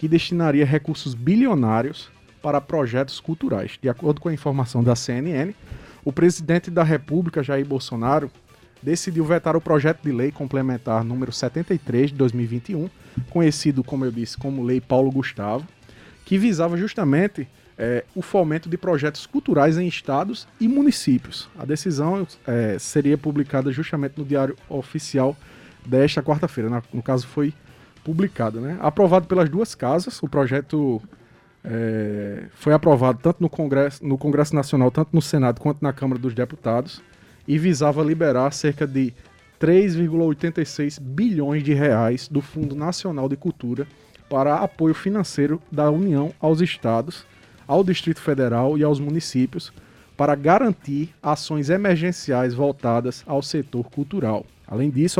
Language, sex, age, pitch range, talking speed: Portuguese, male, 20-39, 130-165 Hz, 140 wpm